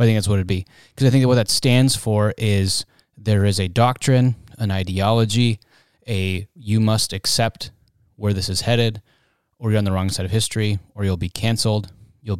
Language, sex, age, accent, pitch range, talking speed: English, male, 20-39, American, 100-120 Hz, 205 wpm